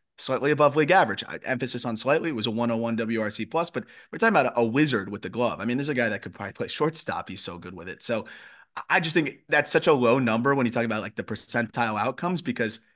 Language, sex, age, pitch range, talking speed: English, male, 30-49, 115-150 Hz, 260 wpm